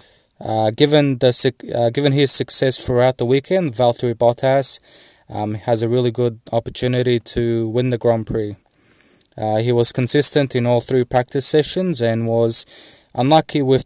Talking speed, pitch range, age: 155 wpm, 110-125 Hz, 20-39